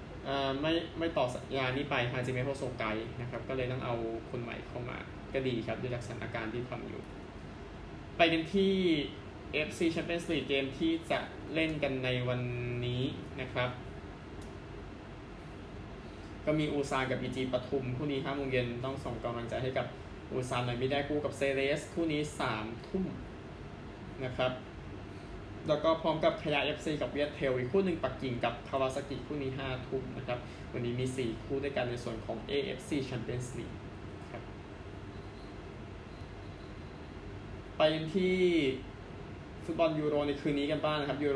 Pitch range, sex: 115-150 Hz, male